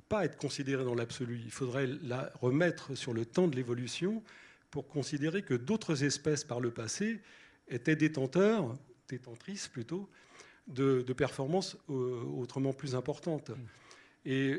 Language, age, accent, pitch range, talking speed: French, 40-59, French, 120-150 Hz, 130 wpm